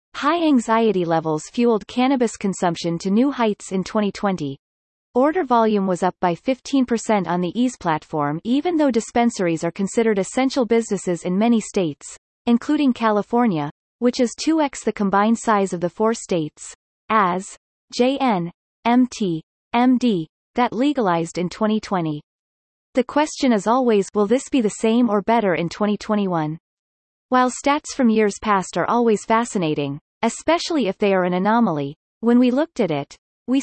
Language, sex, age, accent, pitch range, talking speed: English, female, 30-49, American, 180-245 Hz, 150 wpm